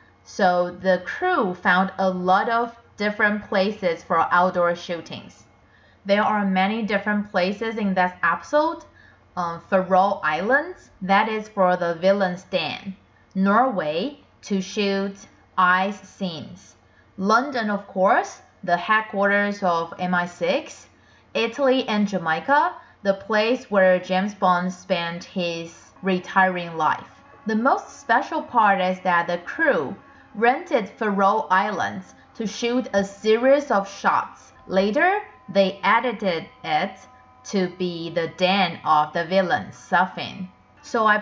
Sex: female